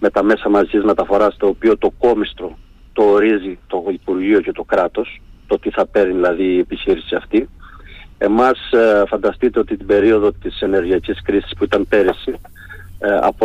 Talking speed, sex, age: 160 wpm, male, 40-59